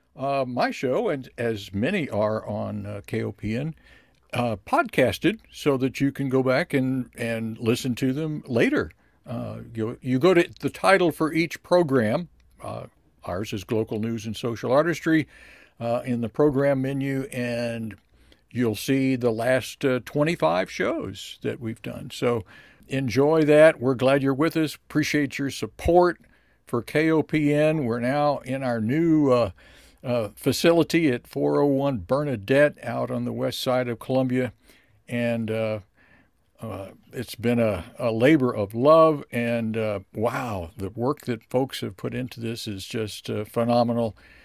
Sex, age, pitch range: male, 60-79, 110-140 Hz